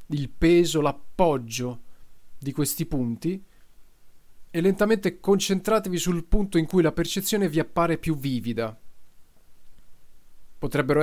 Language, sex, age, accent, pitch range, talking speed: Italian, male, 30-49, native, 125-165 Hz, 110 wpm